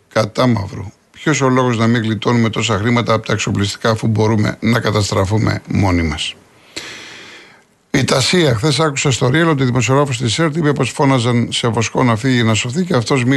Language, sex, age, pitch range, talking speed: Greek, male, 50-69, 115-145 Hz, 185 wpm